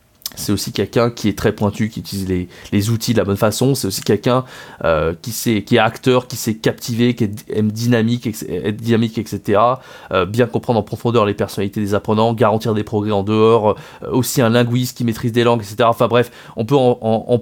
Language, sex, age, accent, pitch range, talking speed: French, male, 20-39, French, 110-135 Hz, 225 wpm